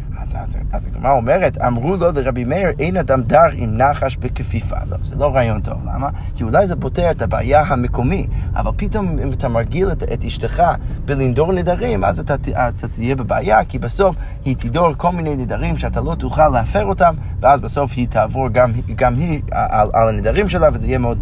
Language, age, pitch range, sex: Hebrew, 30-49, 115-150 Hz, male